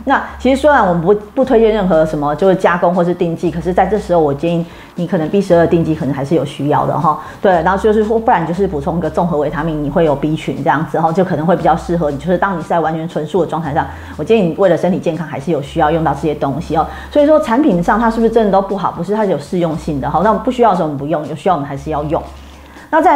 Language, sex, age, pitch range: Chinese, female, 30-49, 160-200 Hz